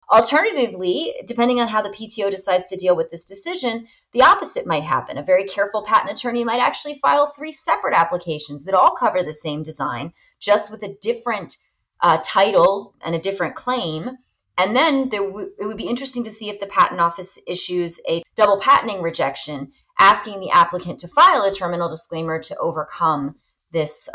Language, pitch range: English, 175-250 Hz